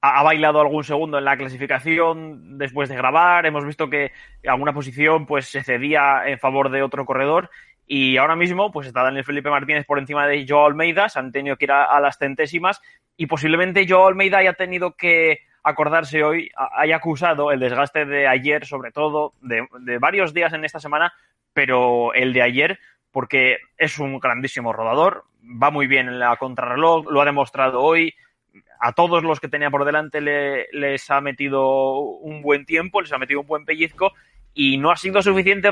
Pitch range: 135-160 Hz